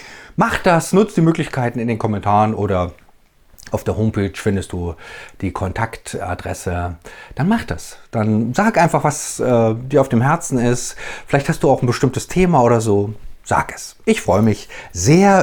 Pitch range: 105-150 Hz